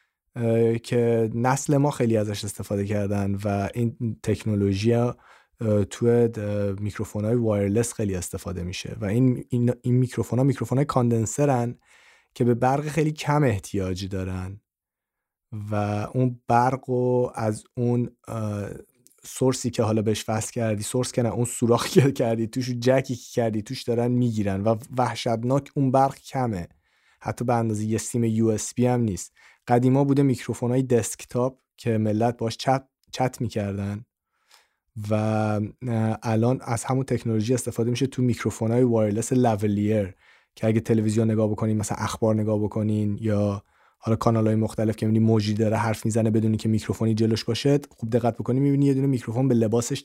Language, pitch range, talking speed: Persian, 110-125 Hz, 145 wpm